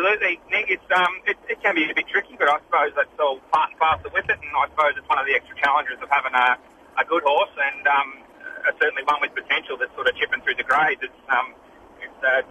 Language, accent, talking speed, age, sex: English, Australian, 260 wpm, 30-49, male